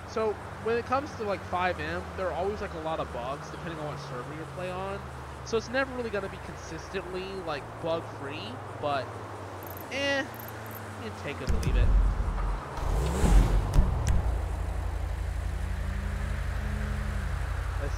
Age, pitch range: 20-39, 85-95 Hz